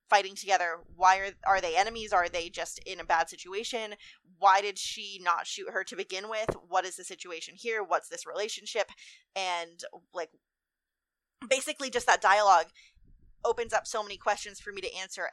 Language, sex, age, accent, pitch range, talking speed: English, female, 20-39, American, 170-215 Hz, 180 wpm